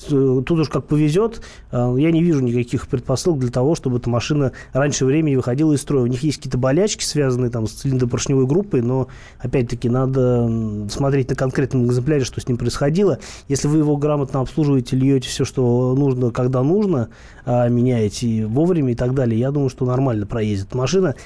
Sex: male